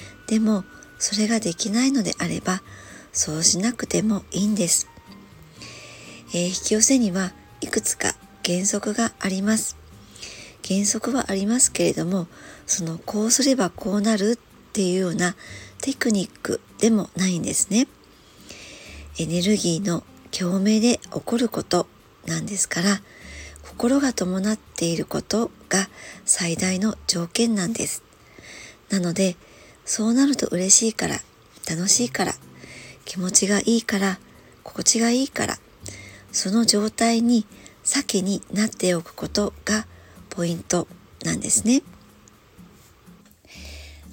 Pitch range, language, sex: 175-225 Hz, Japanese, male